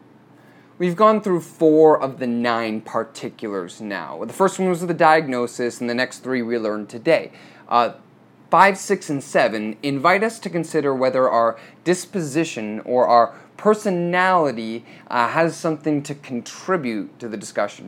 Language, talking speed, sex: English, 150 wpm, male